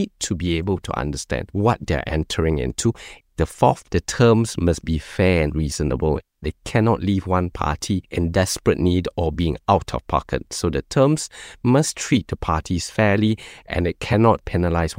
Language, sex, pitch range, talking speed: English, male, 80-120 Hz, 170 wpm